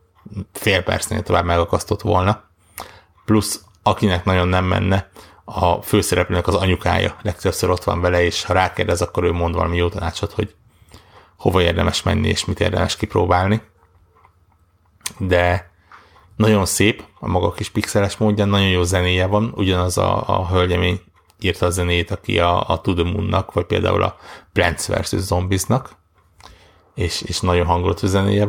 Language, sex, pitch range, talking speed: Hungarian, male, 85-105 Hz, 145 wpm